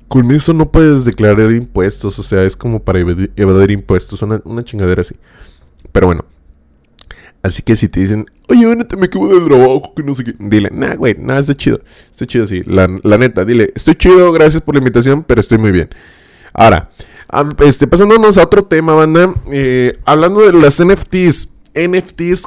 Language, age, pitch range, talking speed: Spanish, 20-39, 100-150 Hz, 190 wpm